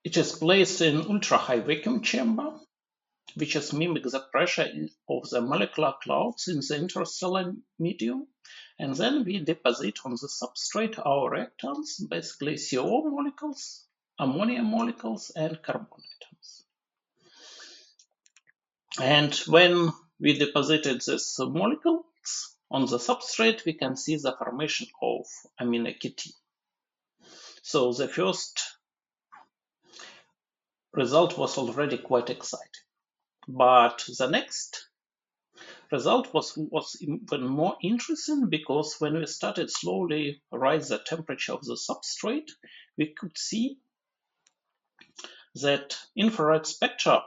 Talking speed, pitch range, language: 110 wpm, 145-225 Hz, English